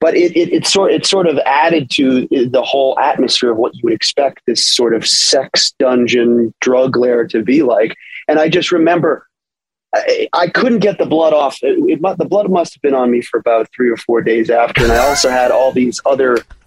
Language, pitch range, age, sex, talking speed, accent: English, 120-180 Hz, 30-49, male, 225 wpm, American